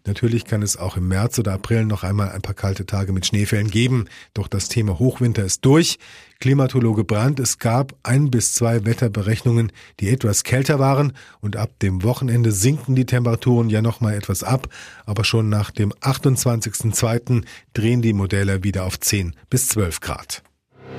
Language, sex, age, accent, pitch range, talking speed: German, male, 40-59, German, 110-135 Hz, 175 wpm